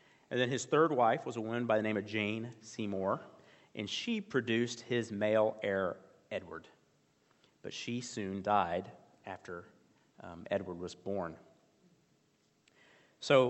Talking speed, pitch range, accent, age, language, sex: 140 wpm, 105-130 Hz, American, 40-59, English, male